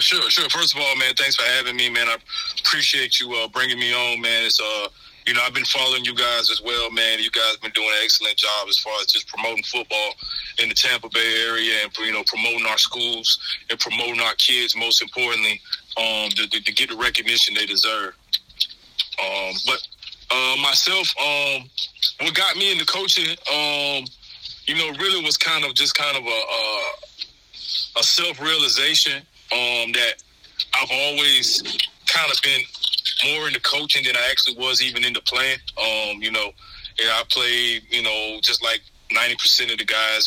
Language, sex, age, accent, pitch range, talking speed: English, male, 20-39, American, 110-130 Hz, 190 wpm